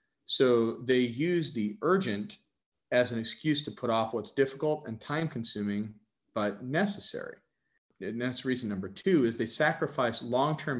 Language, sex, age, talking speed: English, male, 40-59, 145 wpm